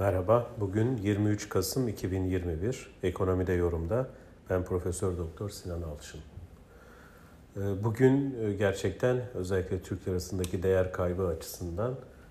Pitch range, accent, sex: 85-100 Hz, native, male